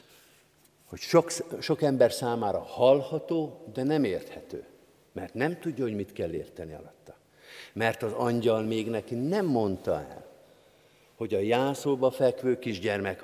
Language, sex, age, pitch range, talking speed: Hungarian, male, 50-69, 110-150 Hz, 135 wpm